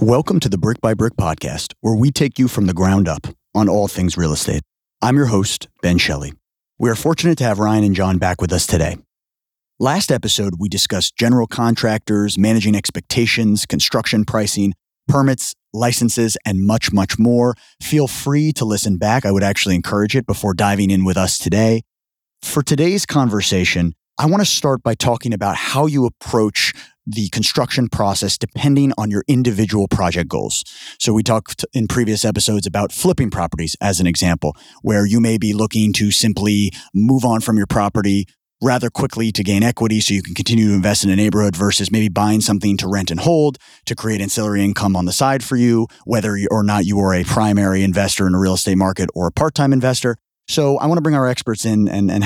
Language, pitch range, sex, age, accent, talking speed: English, 100-120 Hz, male, 30-49, American, 195 wpm